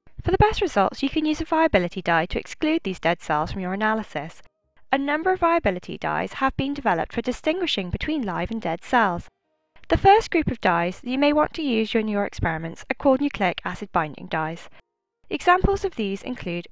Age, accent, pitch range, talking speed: 10-29, British, 185-300 Hz, 200 wpm